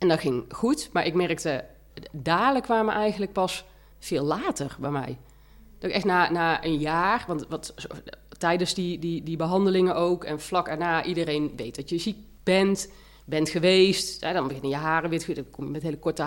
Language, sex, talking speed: Dutch, female, 190 wpm